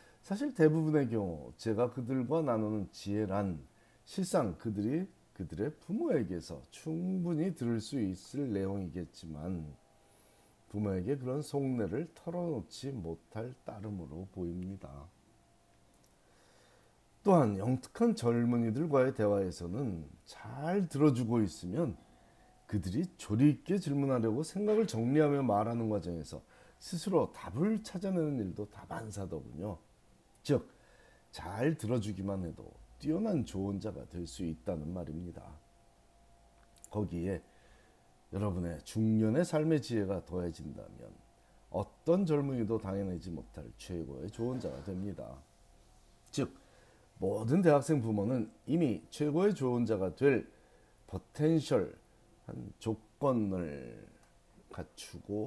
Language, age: Korean, 40-59